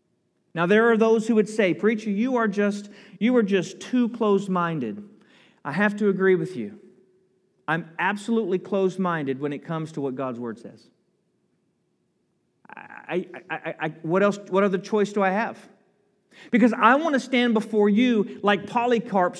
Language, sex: English, male